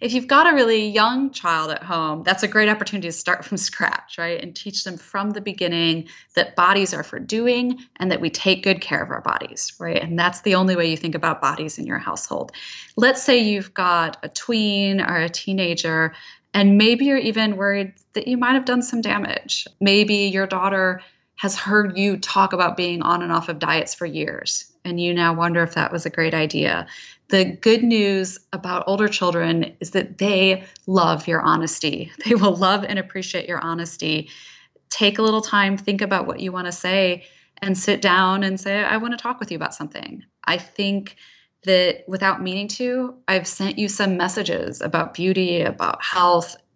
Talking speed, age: 200 wpm, 20-39